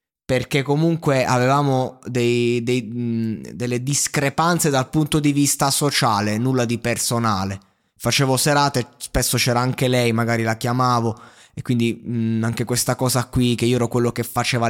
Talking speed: 140 wpm